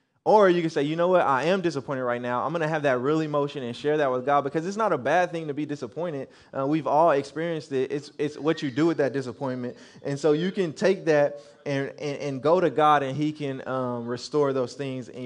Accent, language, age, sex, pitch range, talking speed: American, English, 20-39, male, 130-160 Hz, 260 wpm